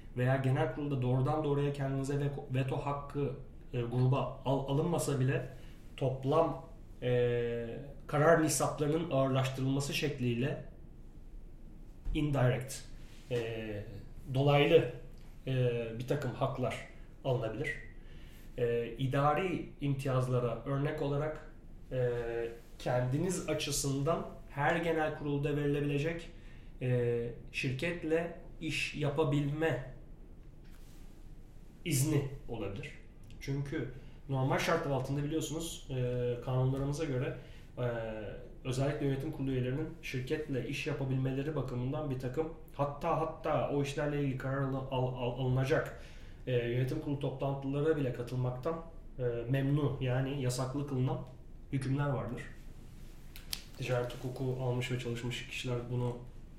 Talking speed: 100 wpm